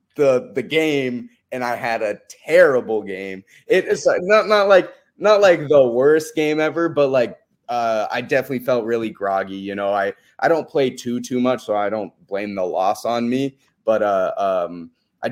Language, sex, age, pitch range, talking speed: English, male, 20-39, 115-145 Hz, 190 wpm